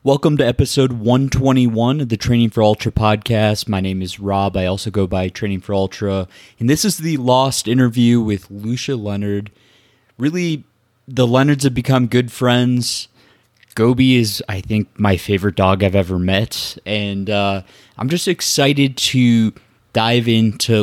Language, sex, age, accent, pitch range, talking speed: English, male, 20-39, American, 100-130 Hz, 160 wpm